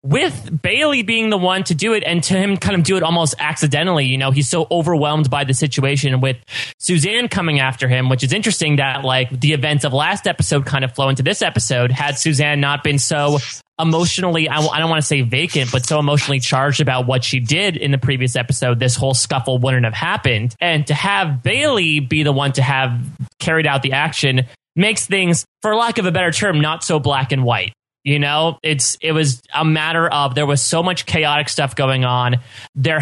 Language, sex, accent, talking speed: English, male, American, 220 wpm